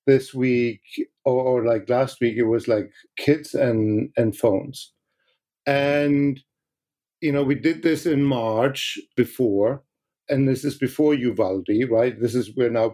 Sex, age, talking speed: male, 50-69, 150 wpm